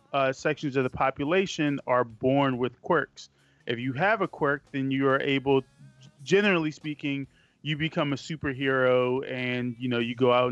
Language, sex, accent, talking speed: English, male, American, 170 wpm